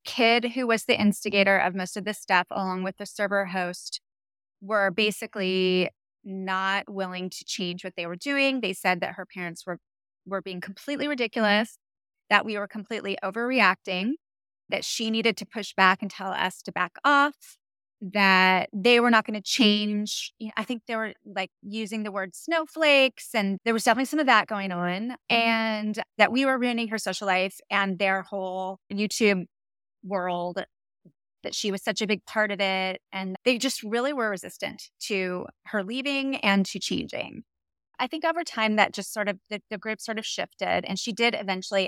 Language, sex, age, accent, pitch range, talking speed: English, female, 20-39, American, 185-225 Hz, 185 wpm